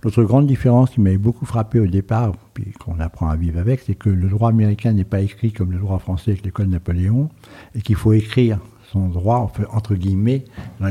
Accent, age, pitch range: French, 60-79, 100-120 Hz